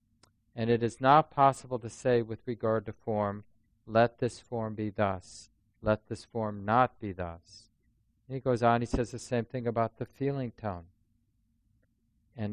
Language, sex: English, male